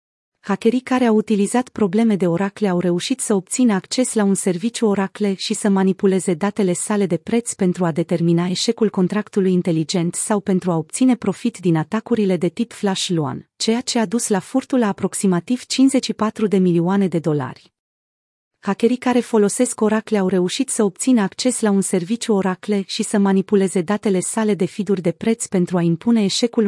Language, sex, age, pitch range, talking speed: Romanian, female, 30-49, 180-220 Hz, 180 wpm